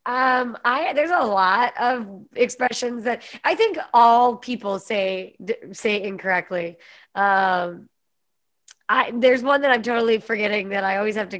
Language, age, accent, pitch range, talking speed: English, 20-39, American, 195-250 Hz, 155 wpm